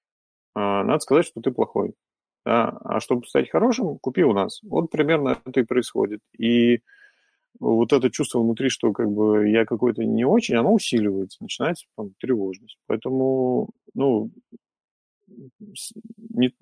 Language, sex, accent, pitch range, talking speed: Russian, male, native, 110-140 Hz, 135 wpm